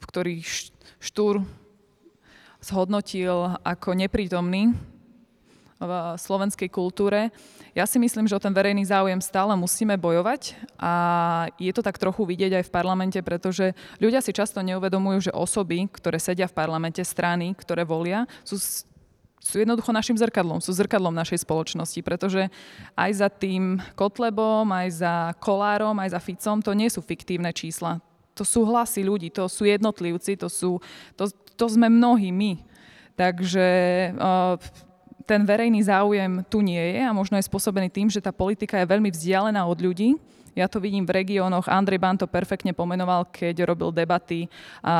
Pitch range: 175-205 Hz